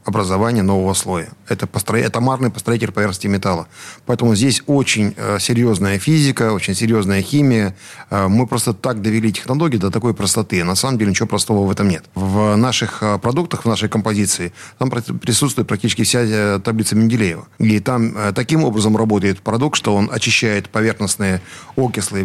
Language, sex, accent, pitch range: Russian, male, native, 100-125 Hz